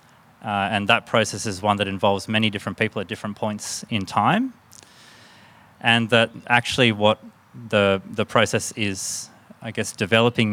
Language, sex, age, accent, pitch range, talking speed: English, male, 30-49, Australian, 100-115 Hz, 155 wpm